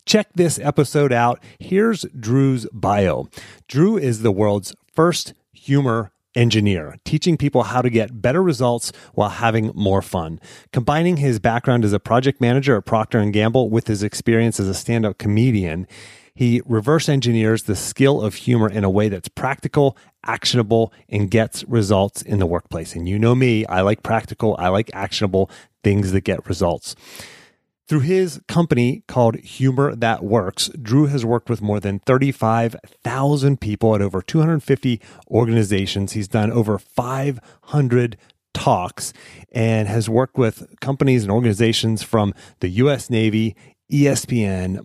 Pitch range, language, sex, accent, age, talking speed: 105-130 Hz, English, male, American, 30-49, 150 wpm